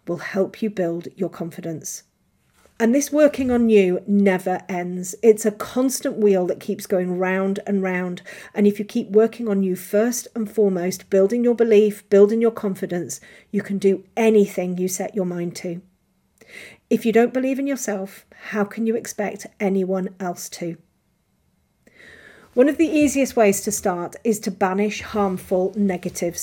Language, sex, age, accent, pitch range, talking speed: English, female, 40-59, British, 185-225 Hz, 165 wpm